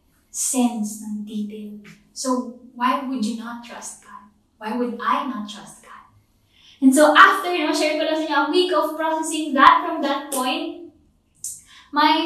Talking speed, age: 150 wpm, 20-39